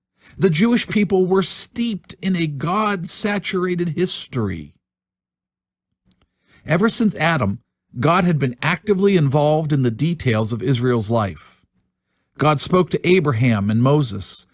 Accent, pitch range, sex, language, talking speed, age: American, 120-185 Hz, male, English, 120 wpm, 50-69